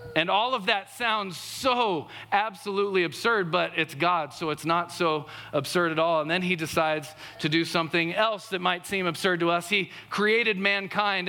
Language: English